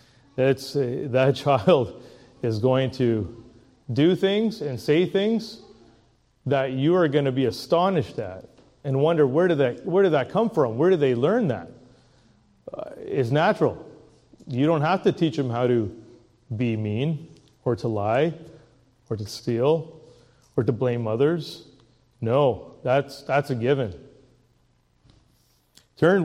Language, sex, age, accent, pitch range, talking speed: English, male, 30-49, American, 120-145 Hz, 145 wpm